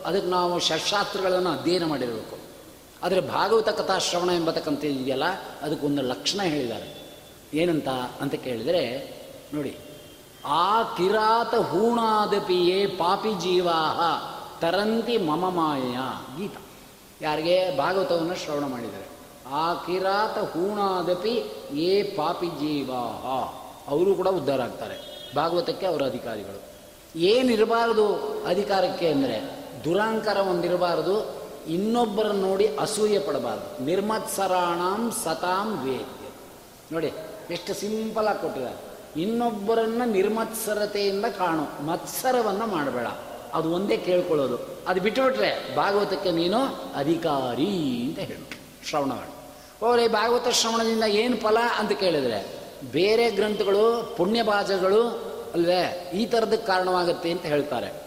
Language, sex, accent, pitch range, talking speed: Kannada, male, native, 165-215 Hz, 95 wpm